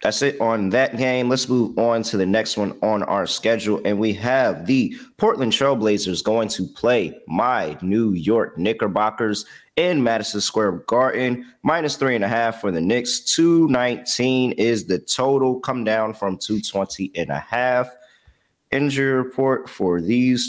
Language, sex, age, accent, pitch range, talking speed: English, male, 30-49, American, 90-125 Hz, 160 wpm